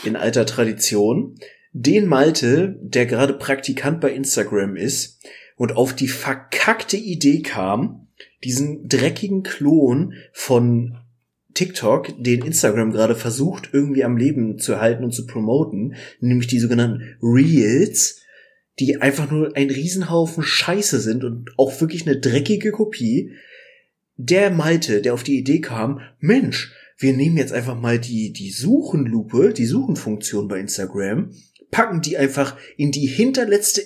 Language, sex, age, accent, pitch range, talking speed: German, male, 30-49, German, 120-170 Hz, 135 wpm